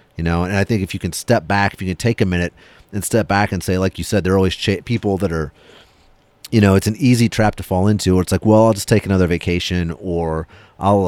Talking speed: 275 wpm